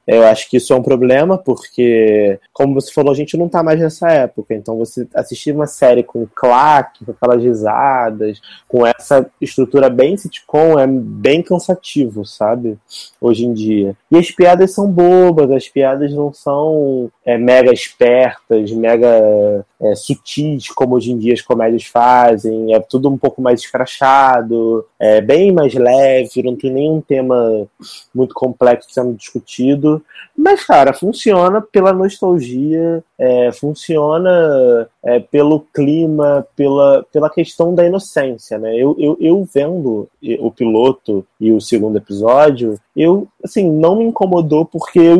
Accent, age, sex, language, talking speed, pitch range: Brazilian, 20-39, male, Portuguese, 145 wpm, 120-170 Hz